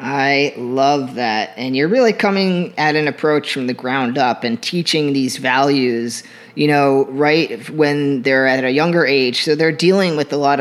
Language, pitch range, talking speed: English, 130-155 Hz, 185 wpm